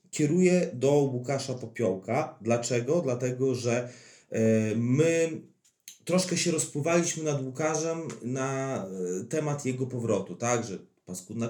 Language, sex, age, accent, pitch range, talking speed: Polish, male, 30-49, native, 110-140 Hz, 100 wpm